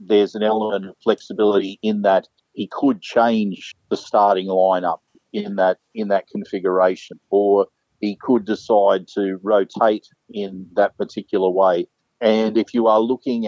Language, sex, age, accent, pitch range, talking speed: English, male, 50-69, Australian, 95-110 Hz, 145 wpm